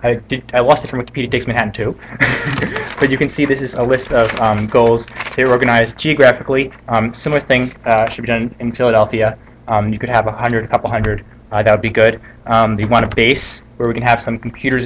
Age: 20-39